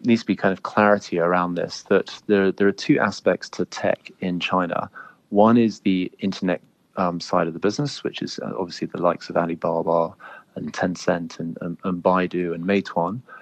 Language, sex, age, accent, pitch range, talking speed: English, male, 30-49, British, 90-100 Hz, 190 wpm